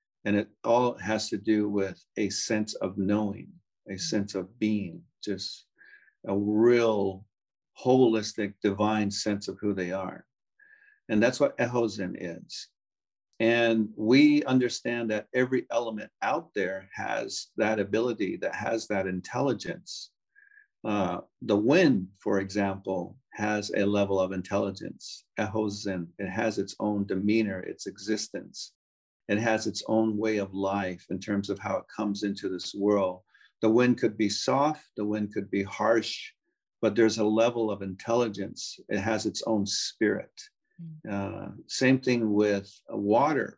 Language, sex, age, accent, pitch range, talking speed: English, male, 50-69, American, 100-110 Hz, 145 wpm